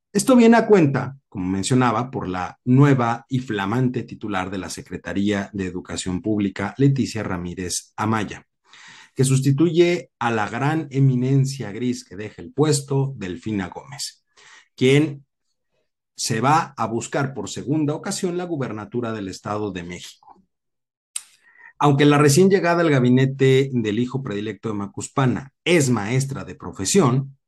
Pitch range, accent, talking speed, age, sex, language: 110-155 Hz, Mexican, 140 wpm, 40-59, male, Spanish